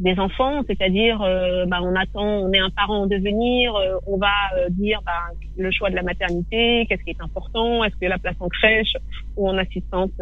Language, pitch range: French, 185-220 Hz